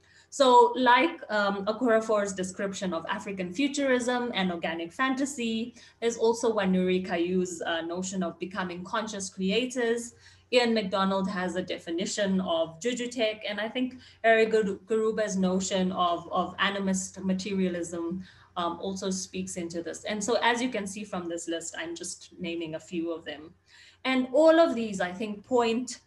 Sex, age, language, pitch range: female, 30-49, English, 180-225 Hz